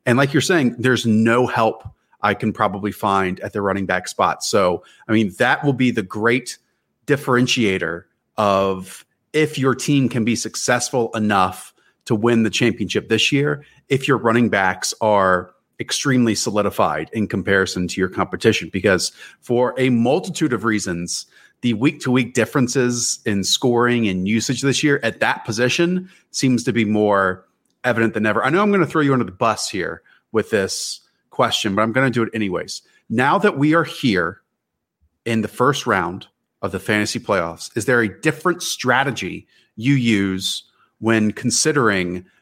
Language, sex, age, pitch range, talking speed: English, male, 30-49, 105-135 Hz, 170 wpm